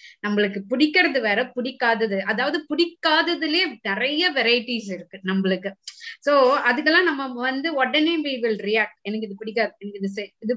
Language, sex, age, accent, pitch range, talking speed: English, female, 20-39, Indian, 210-275 Hz, 125 wpm